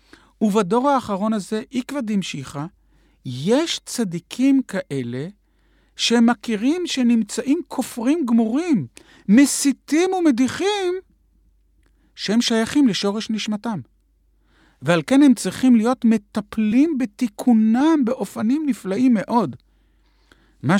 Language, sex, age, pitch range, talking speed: Hebrew, male, 50-69, 165-245 Hz, 85 wpm